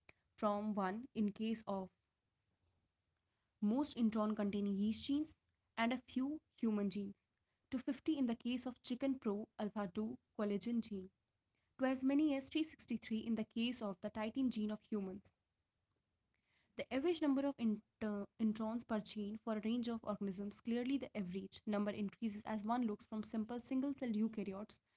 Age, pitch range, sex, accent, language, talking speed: 20-39, 205-240 Hz, female, Indian, English, 160 wpm